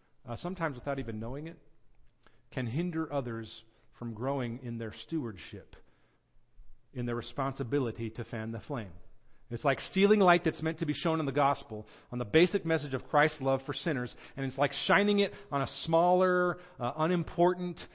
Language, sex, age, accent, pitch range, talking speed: English, male, 40-59, American, 120-165 Hz, 175 wpm